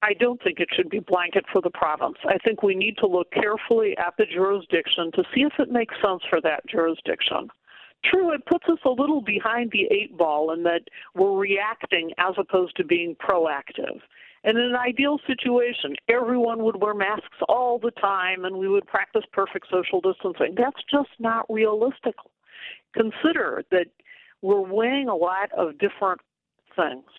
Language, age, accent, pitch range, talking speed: English, 50-69, American, 185-250 Hz, 175 wpm